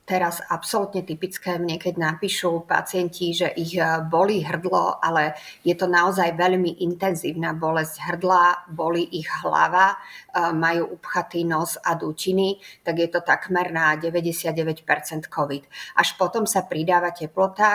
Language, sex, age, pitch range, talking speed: Slovak, female, 50-69, 160-180 Hz, 130 wpm